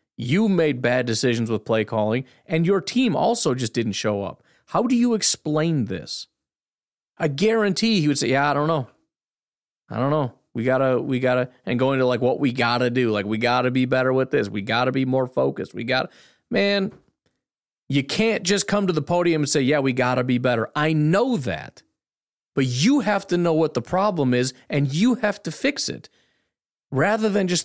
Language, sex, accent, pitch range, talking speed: English, male, American, 125-175 Hz, 215 wpm